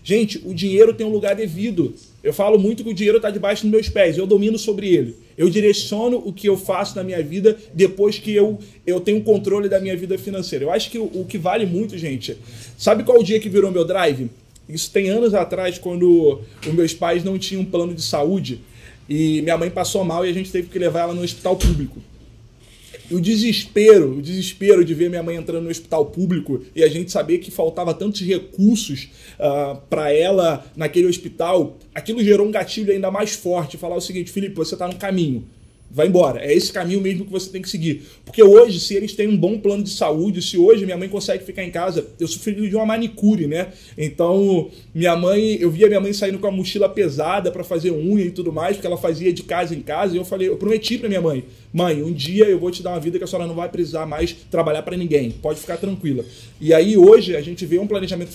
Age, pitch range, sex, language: 20-39, 165-205 Hz, male, Portuguese